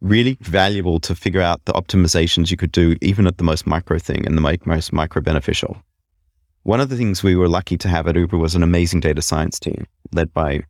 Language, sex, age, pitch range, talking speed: English, male, 30-49, 75-95 Hz, 225 wpm